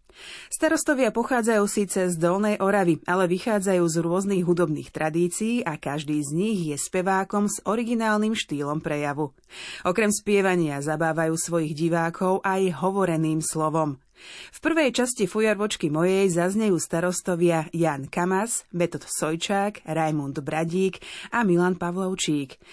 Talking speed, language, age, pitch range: 120 wpm, Slovak, 30-49, 155-200 Hz